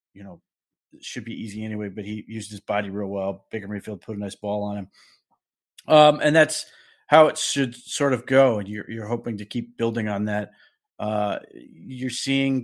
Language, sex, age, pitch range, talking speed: English, male, 30-49, 110-130 Hz, 205 wpm